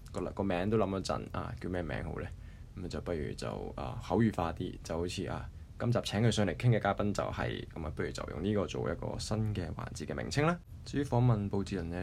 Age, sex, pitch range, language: 20-39, male, 90-115 Hz, Chinese